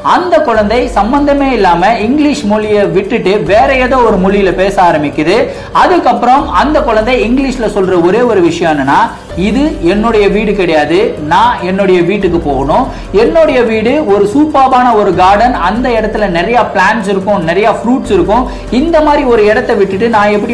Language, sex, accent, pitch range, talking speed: Tamil, male, native, 195-255 Hz, 40 wpm